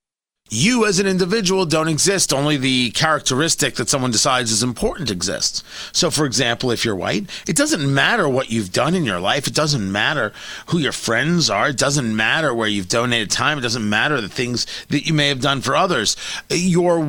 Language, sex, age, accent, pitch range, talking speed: English, male, 40-59, American, 125-180 Hz, 200 wpm